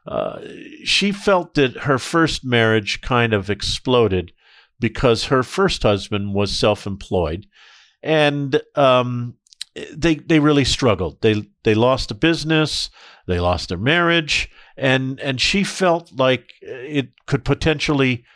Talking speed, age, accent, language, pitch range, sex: 130 wpm, 50-69, American, English, 105-145 Hz, male